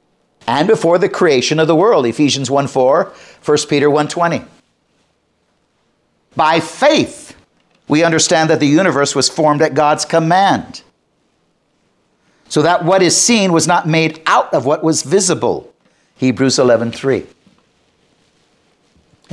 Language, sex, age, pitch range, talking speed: English, male, 50-69, 150-200 Hz, 125 wpm